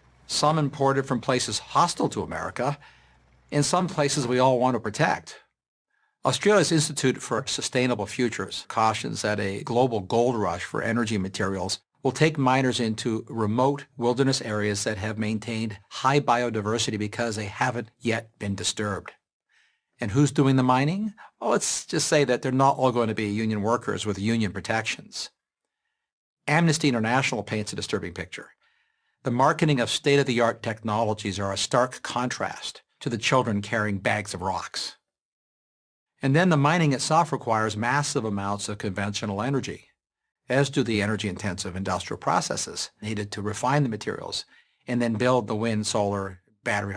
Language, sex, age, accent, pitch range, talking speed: English, male, 50-69, American, 105-135 Hz, 155 wpm